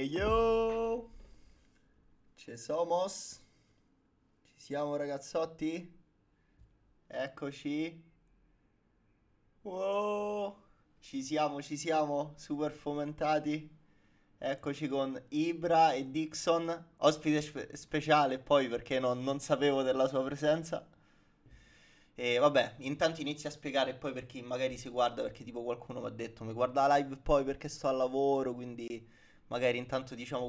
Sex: male